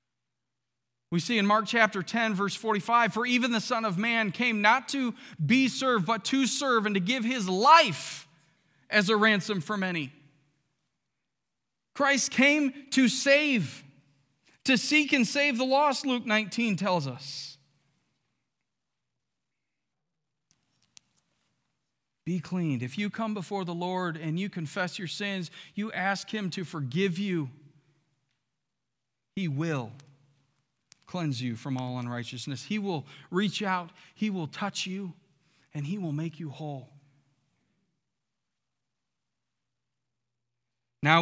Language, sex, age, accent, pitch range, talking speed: English, male, 40-59, American, 140-200 Hz, 125 wpm